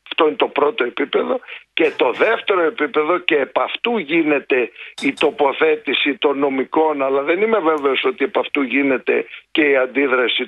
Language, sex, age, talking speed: Greek, male, 50-69, 160 wpm